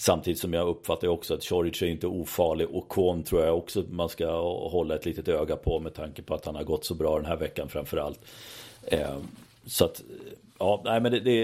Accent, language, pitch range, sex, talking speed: native, Swedish, 85-105 Hz, male, 195 wpm